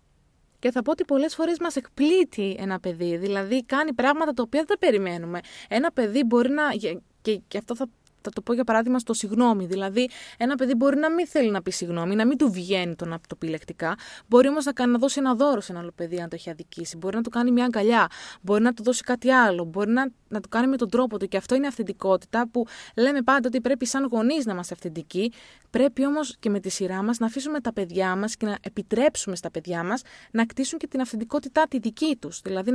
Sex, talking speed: female, 230 wpm